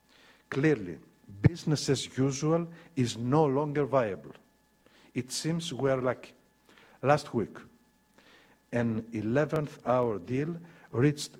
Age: 50-69